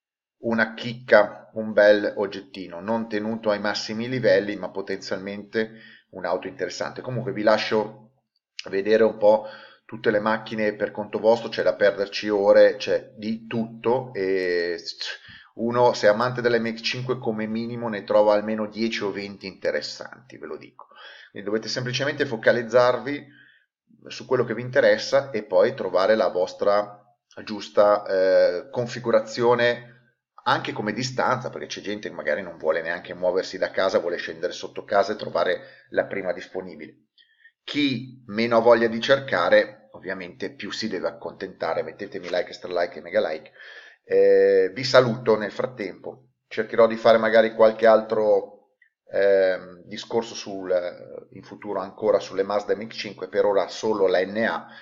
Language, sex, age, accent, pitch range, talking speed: Italian, male, 30-49, native, 105-135 Hz, 150 wpm